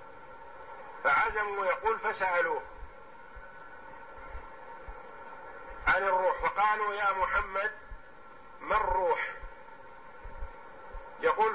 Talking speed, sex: 50 wpm, male